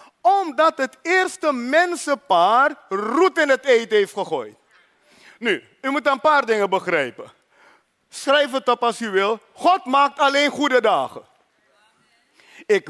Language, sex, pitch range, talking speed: Dutch, male, 205-275 Hz, 135 wpm